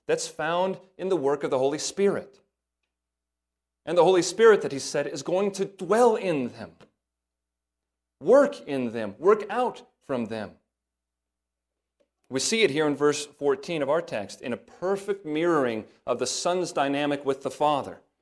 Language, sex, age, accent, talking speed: English, male, 40-59, American, 165 wpm